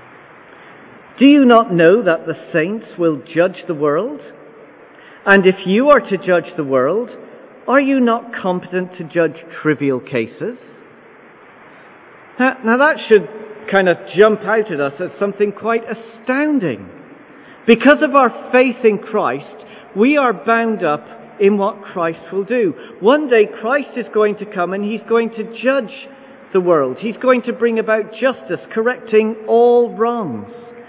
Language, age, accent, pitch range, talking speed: English, 50-69, British, 185-240 Hz, 155 wpm